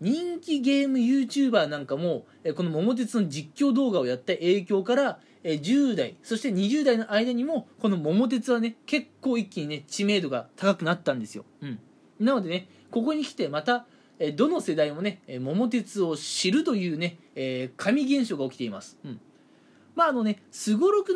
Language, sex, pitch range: Japanese, male, 180-280 Hz